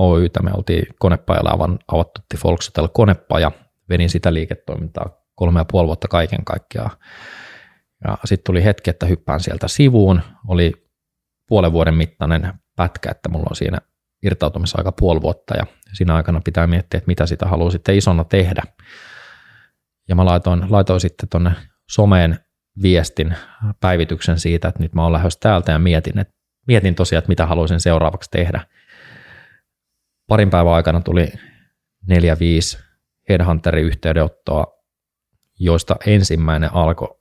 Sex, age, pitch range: male, 20-39, 80-95 Hz